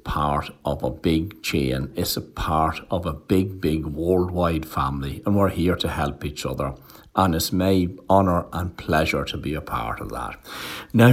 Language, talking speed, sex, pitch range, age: English, 185 wpm, male, 75-95 Hz, 60-79